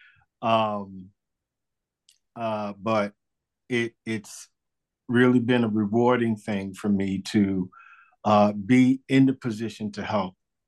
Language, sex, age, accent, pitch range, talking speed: English, male, 50-69, American, 95-115 Hz, 110 wpm